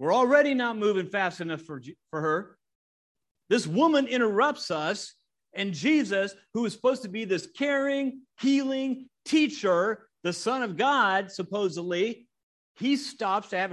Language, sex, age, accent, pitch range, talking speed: English, male, 50-69, American, 165-225 Hz, 145 wpm